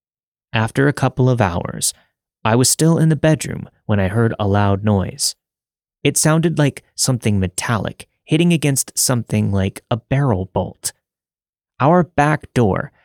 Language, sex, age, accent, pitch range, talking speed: English, male, 30-49, American, 100-135 Hz, 145 wpm